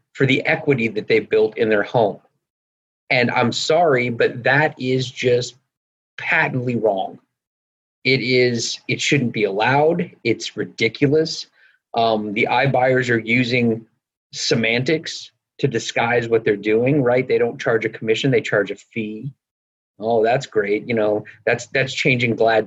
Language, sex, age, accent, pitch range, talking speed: English, male, 30-49, American, 115-145 Hz, 150 wpm